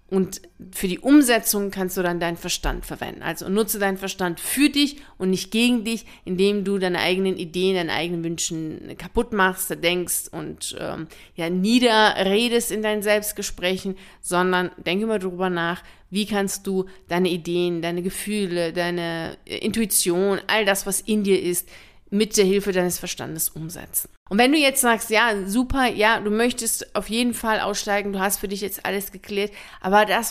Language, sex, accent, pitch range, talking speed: German, female, German, 185-225 Hz, 175 wpm